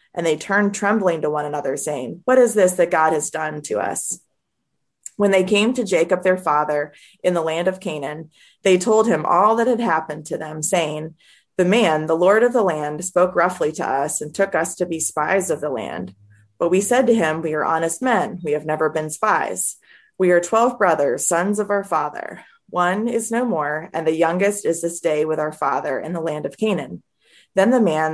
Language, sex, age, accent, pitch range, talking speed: English, female, 20-39, American, 155-200 Hz, 220 wpm